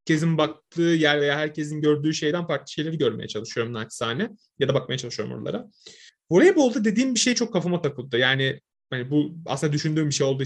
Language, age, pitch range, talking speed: Turkish, 30-49, 130-170 Hz, 185 wpm